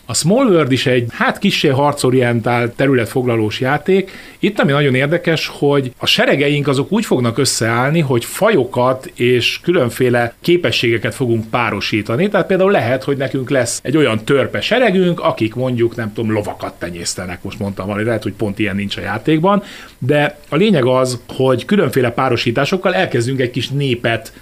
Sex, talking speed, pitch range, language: male, 160 wpm, 110-150 Hz, Hungarian